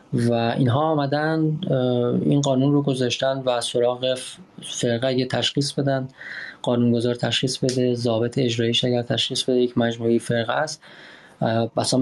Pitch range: 125-170 Hz